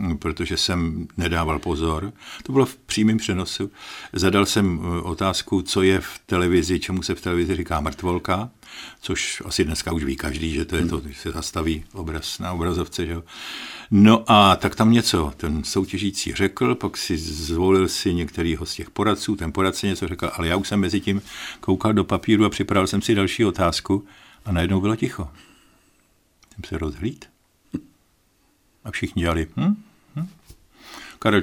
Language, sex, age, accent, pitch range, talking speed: Czech, male, 50-69, native, 85-110 Hz, 160 wpm